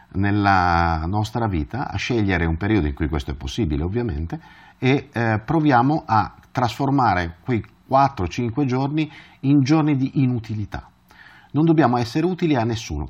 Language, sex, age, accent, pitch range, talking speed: Italian, male, 40-59, native, 90-130 Hz, 140 wpm